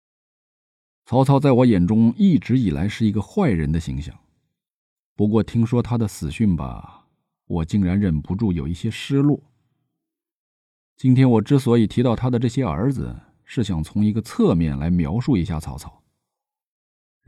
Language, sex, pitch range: Chinese, male, 85-130 Hz